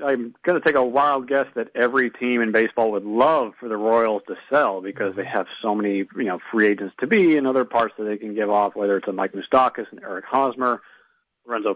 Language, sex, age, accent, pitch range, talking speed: English, male, 40-59, American, 110-135 Hz, 240 wpm